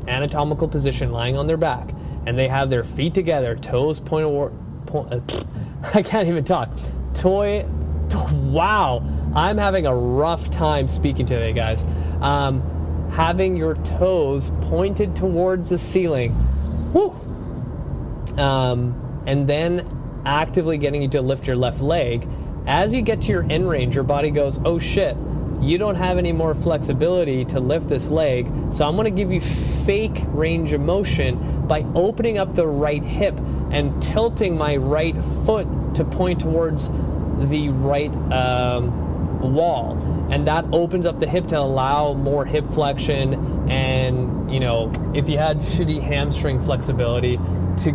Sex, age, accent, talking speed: male, 20-39, American, 150 wpm